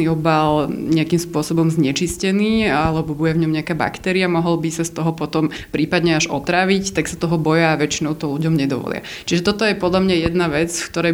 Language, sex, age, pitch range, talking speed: Slovak, female, 20-39, 155-175 Hz, 200 wpm